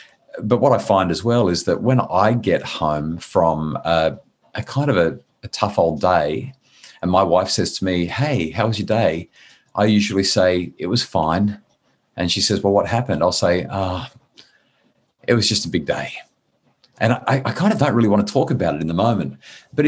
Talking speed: 215 wpm